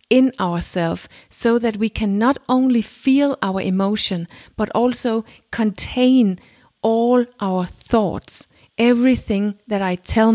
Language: English